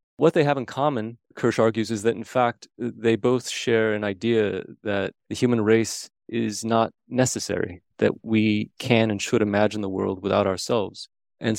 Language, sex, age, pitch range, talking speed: English, male, 30-49, 105-125 Hz, 175 wpm